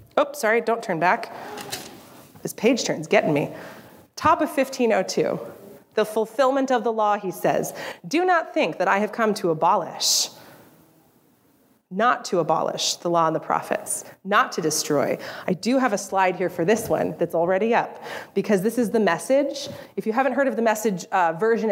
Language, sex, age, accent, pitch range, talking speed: English, female, 30-49, American, 175-255 Hz, 180 wpm